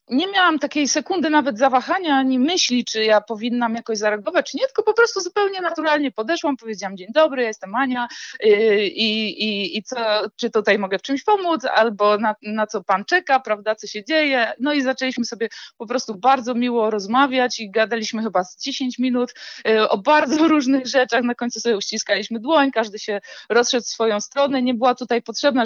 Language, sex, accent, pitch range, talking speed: Polish, female, native, 210-275 Hz, 190 wpm